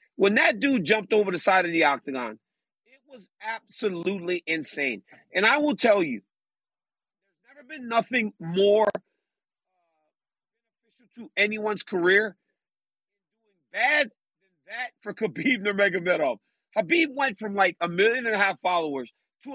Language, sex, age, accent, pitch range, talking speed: English, male, 40-59, American, 180-235 Hz, 140 wpm